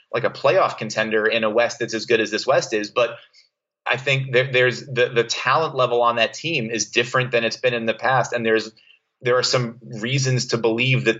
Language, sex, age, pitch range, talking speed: English, male, 30-49, 115-135 Hz, 230 wpm